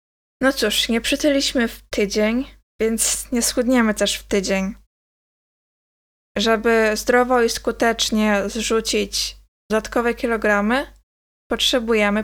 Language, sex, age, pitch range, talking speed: Polish, female, 20-39, 215-245 Hz, 100 wpm